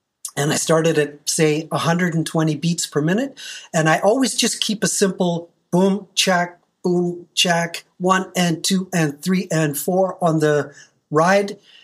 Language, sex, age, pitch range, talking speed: German, male, 40-59, 155-190 Hz, 150 wpm